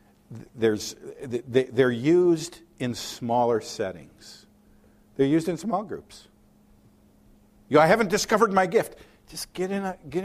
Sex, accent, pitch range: male, American, 115-160 Hz